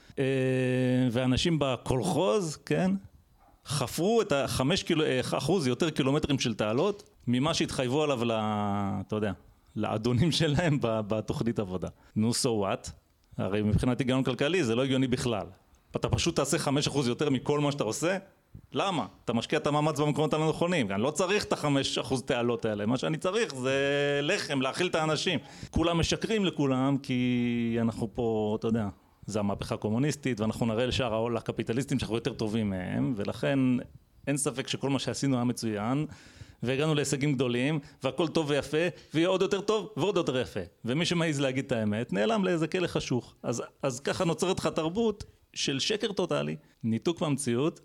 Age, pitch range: 30-49, 115-155 Hz